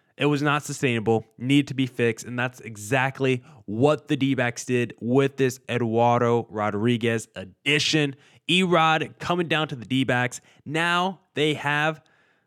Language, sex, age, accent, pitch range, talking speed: English, male, 20-39, American, 125-155 Hz, 140 wpm